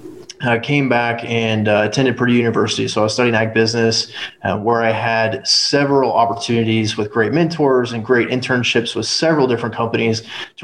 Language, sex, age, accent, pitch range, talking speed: English, male, 20-39, American, 110-130 Hz, 175 wpm